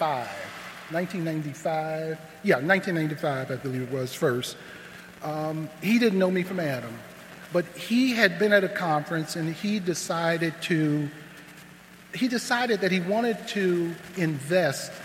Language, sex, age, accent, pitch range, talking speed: English, male, 50-69, American, 155-205 Hz, 130 wpm